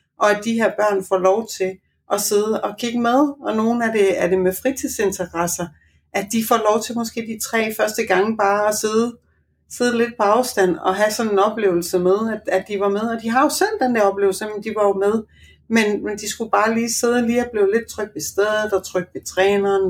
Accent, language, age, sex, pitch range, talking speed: native, Danish, 60-79, female, 185-235 Hz, 245 wpm